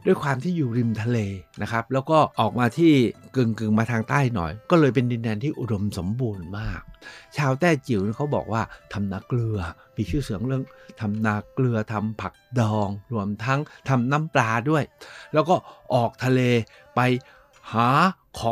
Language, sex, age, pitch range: Thai, male, 60-79, 110-150 Hz